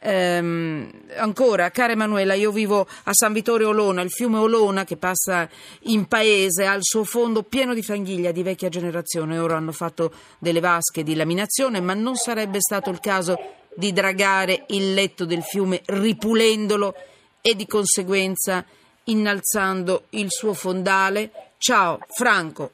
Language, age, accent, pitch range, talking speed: Italian, 40-59, native, 170-205 Hz, 145 wpm